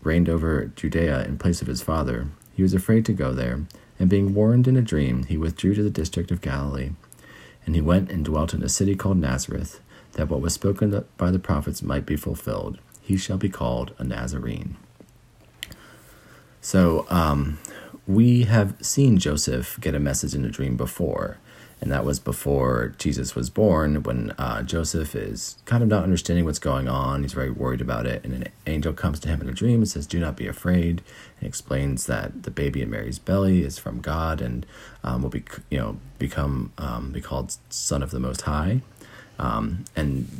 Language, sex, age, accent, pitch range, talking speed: English, male, 40-59, American, 65-90 Hz, 195 wpm